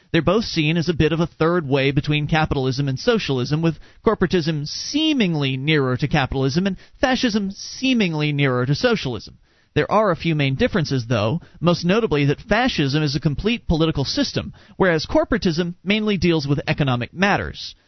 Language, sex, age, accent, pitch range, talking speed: English, male, 40-59, American, 140-195 Hz, 165 wpm